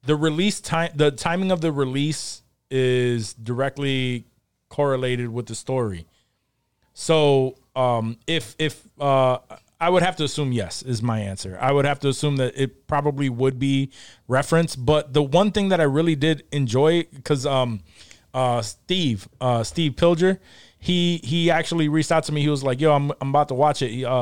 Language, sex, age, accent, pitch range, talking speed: English, male, 20-39, American, 125-155 Hz, 180 wpm